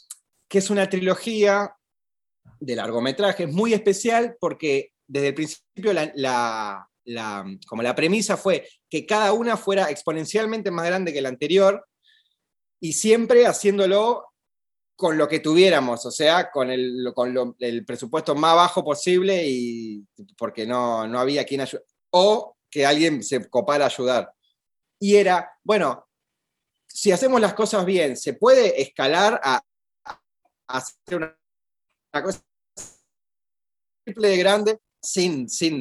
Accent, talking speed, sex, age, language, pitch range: Argentinian, 135 wpm, male, 30-49, Spanish, 135-200 Hz